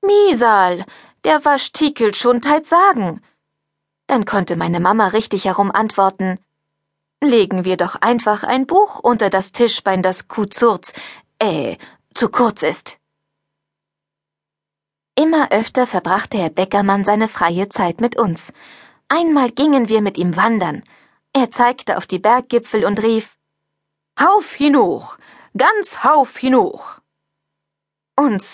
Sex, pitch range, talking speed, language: female, 190-255 Hz, 120 wpm, German